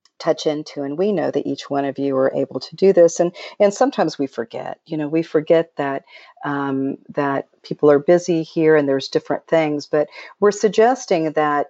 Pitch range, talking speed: 145-200 Hz, 200 wpm